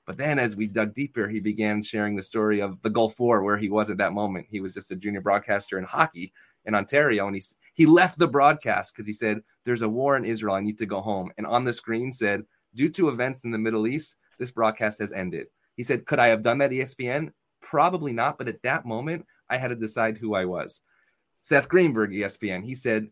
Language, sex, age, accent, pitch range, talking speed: English, male, 30-49, American, 105-125 Hz, 240 wpm